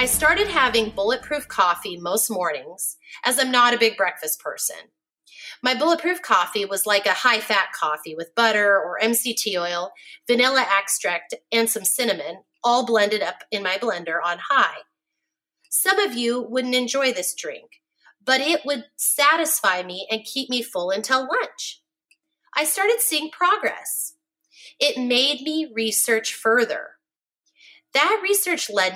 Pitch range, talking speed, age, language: 215-315 Hz, 145 wpm, 30-49, English